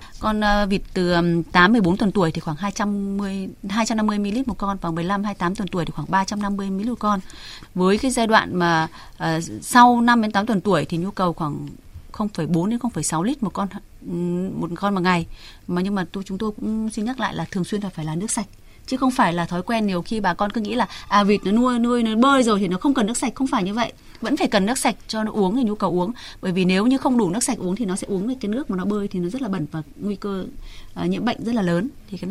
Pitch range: 175-220 Hz